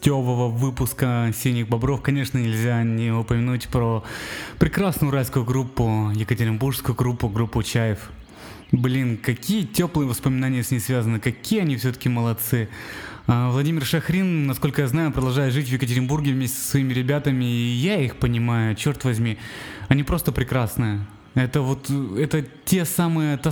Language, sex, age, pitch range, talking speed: Russian, male, 20-39, 115-140 Hz, 145 wpm